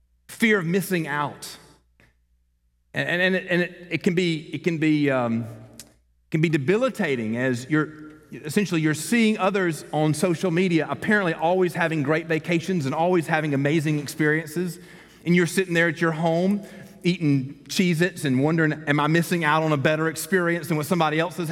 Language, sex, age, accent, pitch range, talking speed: English, male, 40-59, American, 140-185 Hz, 175 wpm